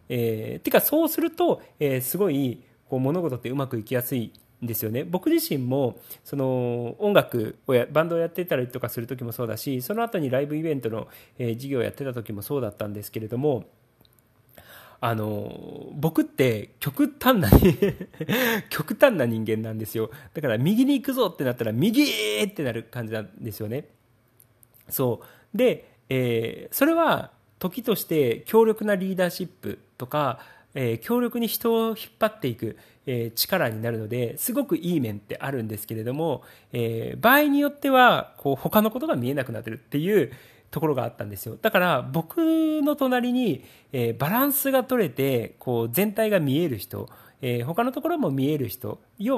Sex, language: male, Japanese